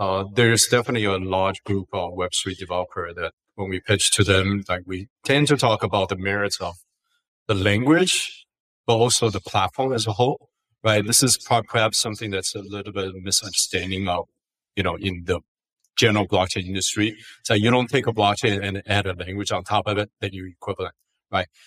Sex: male